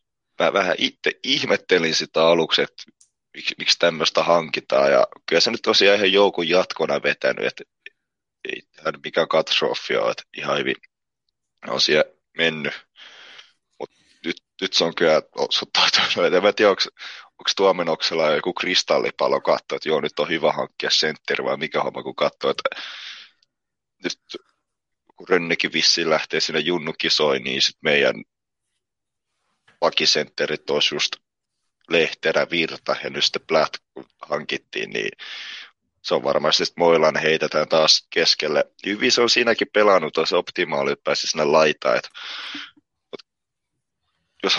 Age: 30-49